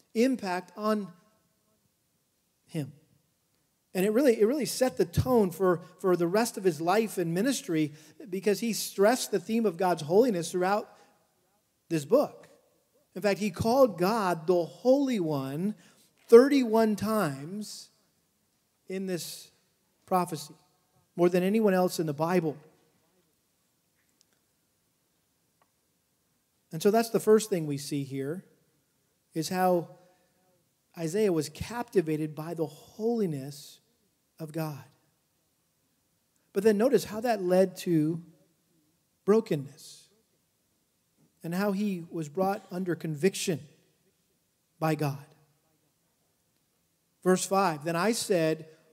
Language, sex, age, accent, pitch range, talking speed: English, male, 40-59, American, 160-205 Hz, 115 wpm